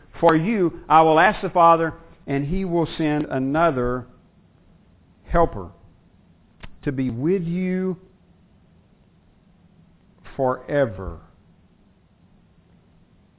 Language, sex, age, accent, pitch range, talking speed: English, male, 50-69, American, 120-170 Hz, 80 wpm